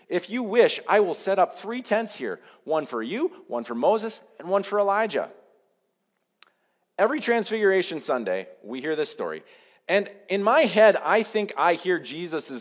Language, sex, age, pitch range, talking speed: English, male, 40-59, 185-285 Hz, 170 wpm